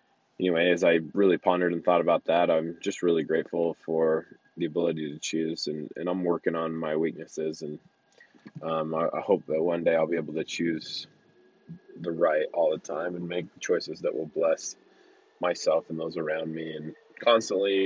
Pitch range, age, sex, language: 80-105 Hz, 20-39, male, English